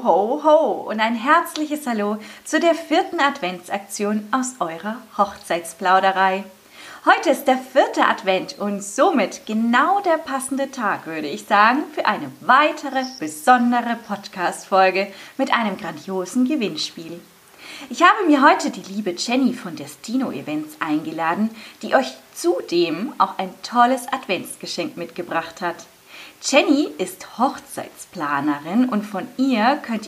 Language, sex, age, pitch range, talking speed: German, female, 20-39, 180-285 Hz, 125 wpm